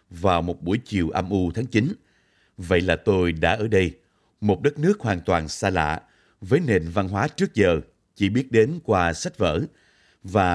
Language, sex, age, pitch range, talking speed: Vietnamese, male, 30-49, 90-110 Hz, 195 wpm